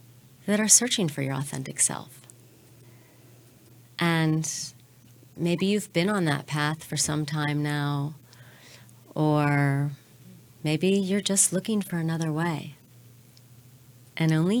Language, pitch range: English, 125-175 Hz